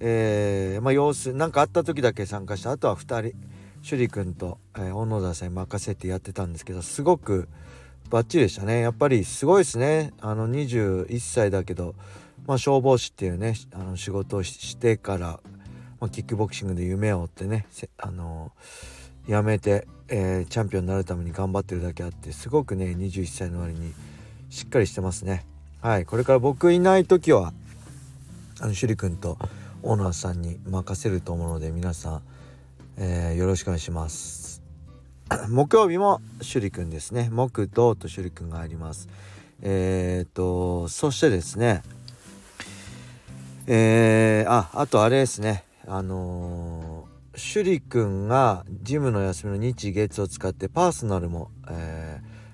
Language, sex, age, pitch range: Japanese, male, 40-59, 90-115 Hz